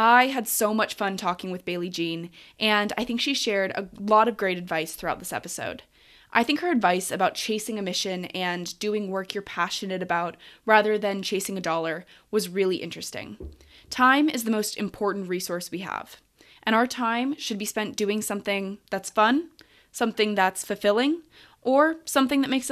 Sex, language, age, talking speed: female, English, 20-39, 180 wpm